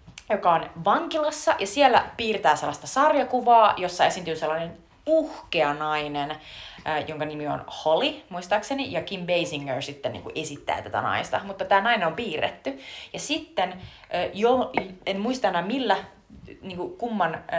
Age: 30-49